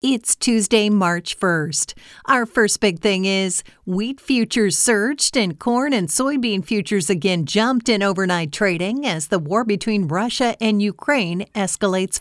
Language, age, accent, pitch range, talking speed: English, 50-69, American, 180-225 Hz, 150 wpm